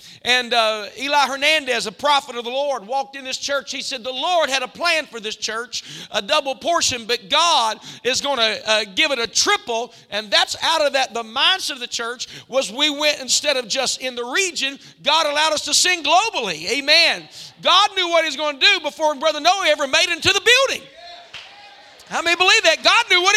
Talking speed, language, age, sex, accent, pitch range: 220 wpm, English, 50-69, male, American, 265-345 Hz